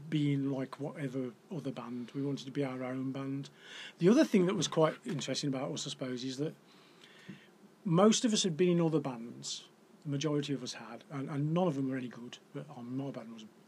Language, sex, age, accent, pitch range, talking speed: English, male, 40-59, British, 140-190 Hz, 225 wpm